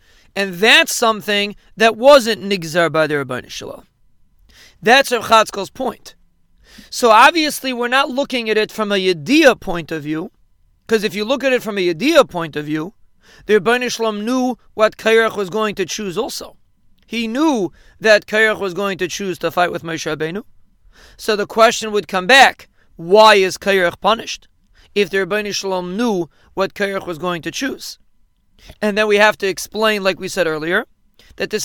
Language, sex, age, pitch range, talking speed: English, male, 40-59, 185-225 Hz, 180 wpm